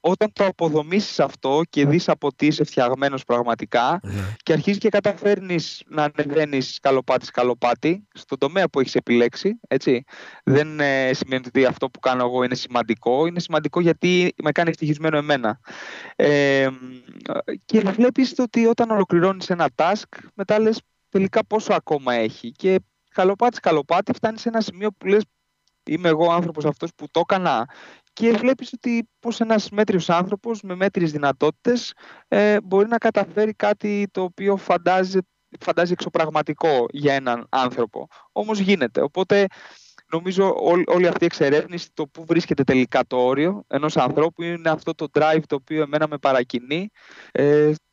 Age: 20-39